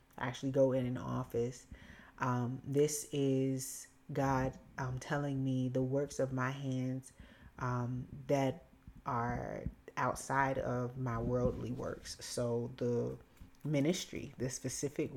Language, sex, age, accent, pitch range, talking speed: English, female, 30-49, American, 125-145 Hz, 120 wpm